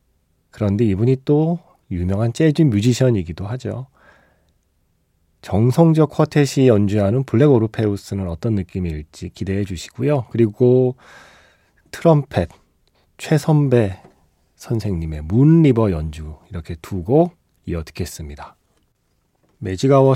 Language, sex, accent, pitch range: Korean, male, native, 100-145 Hz